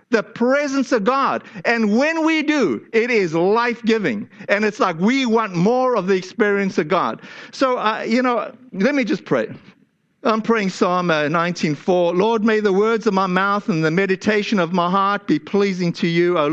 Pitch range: 175-225 Hz